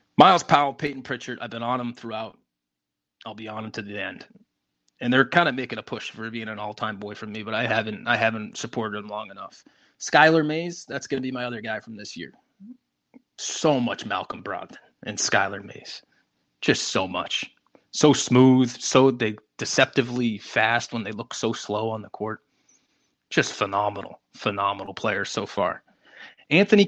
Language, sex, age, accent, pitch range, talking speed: English, male, 20-39, American, 110-135 Hz, 180 wpm